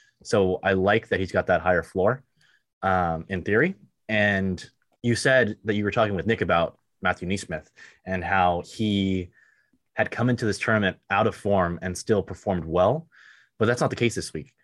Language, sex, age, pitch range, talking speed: English, male, 20-39, 90-110 Hz, 190 wpm